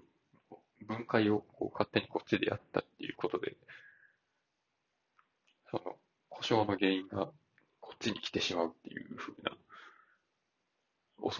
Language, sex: Japanese, male